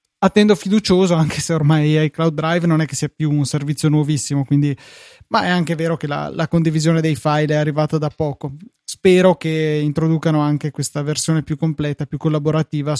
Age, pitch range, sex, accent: 20-39, 150-165 Hz, male, native